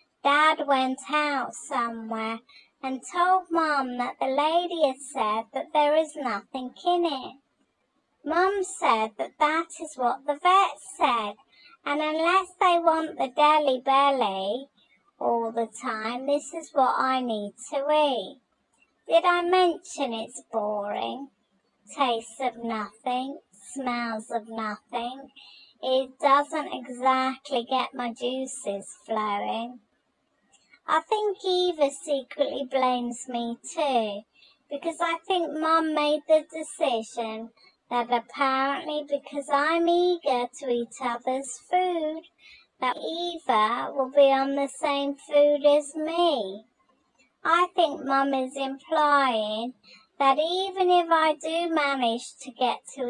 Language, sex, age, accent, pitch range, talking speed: English, male, 30-49, British, 245-320 Hz, 125 wpm